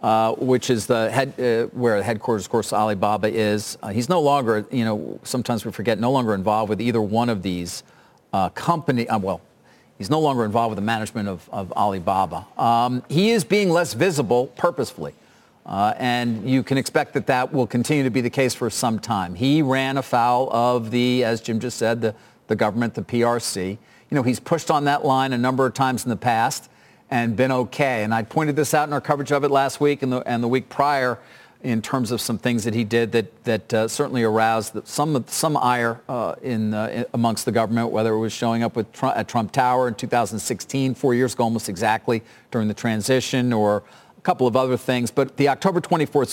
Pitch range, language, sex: 115-135 Hz, English, male